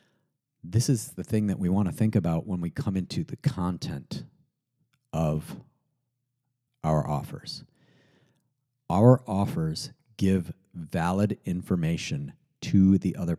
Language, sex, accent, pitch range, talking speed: English, male, American, 95-120 Hz, 115 wpm